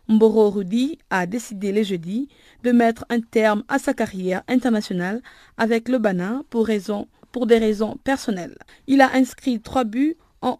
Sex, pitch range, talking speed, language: female, 205-245 Hz, 160 wpm, French